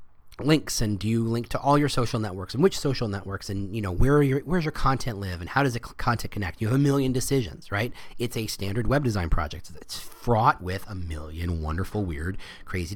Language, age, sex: English, 30-49, male